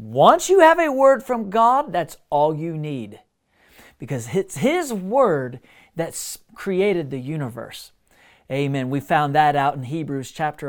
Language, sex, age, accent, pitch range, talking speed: English, male, 40-59, American, 145-220 Hz, 150 wpm